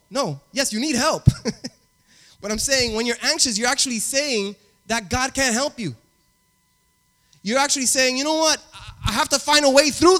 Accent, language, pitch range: American, English, 170-275 Hz